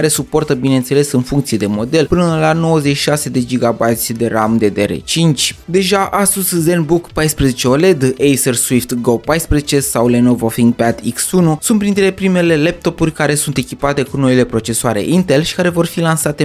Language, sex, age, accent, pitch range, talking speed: Romanian, male, 20-39, native, 120-165 Hz, 160 wpm